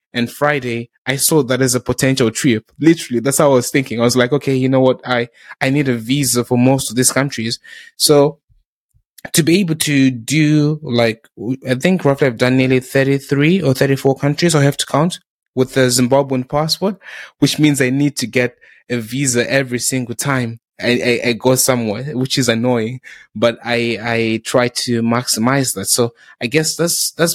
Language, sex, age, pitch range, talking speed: English, male, 20-39, 115-140 Hz, 195 wpm